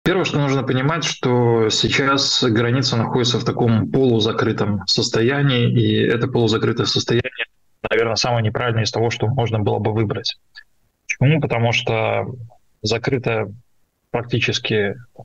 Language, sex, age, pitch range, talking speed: Russian, male, 20-39, 105-125 Hz, 120 wpm